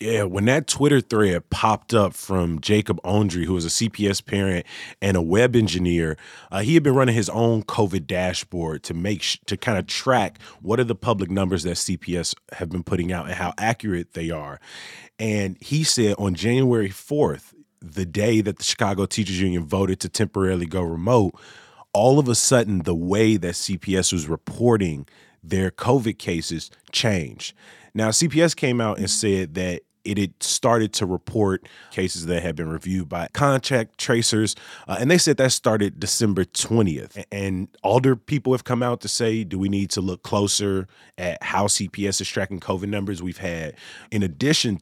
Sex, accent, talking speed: male, American, 180 wpm